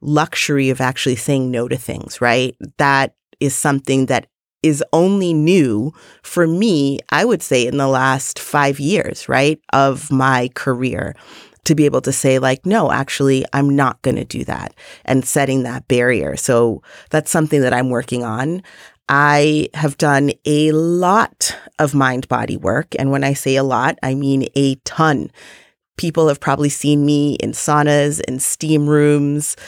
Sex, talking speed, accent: female, 165 wpm, American